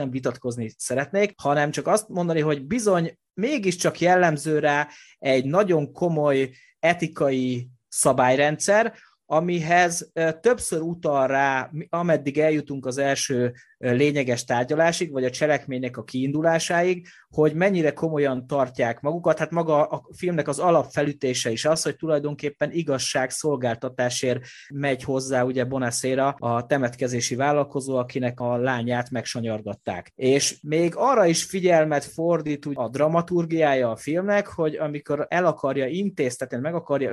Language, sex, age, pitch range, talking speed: Hungarian, male, 30-49, 130-160 Hz, 125 wpm